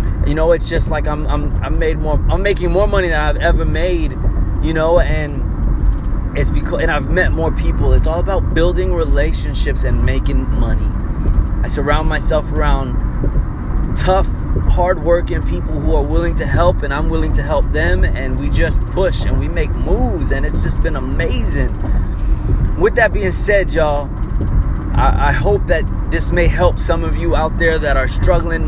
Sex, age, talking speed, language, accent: male, 20-39, 180 wpm, English, American